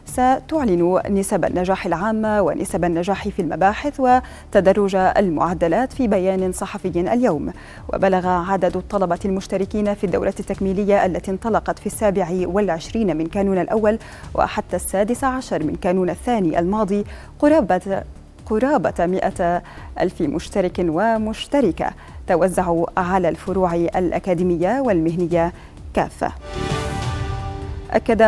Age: 30-49